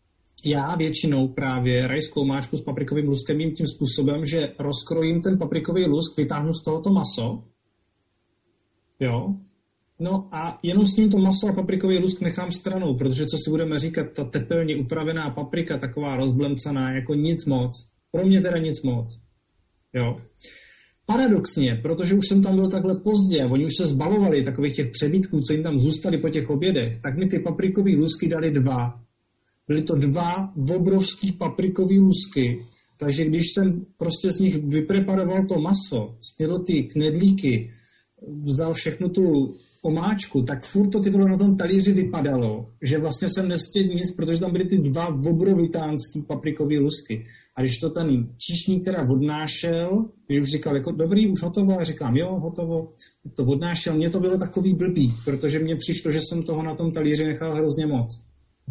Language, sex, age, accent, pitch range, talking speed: Czech, male, 30-49, native, 140-180 Hz, 165 wpm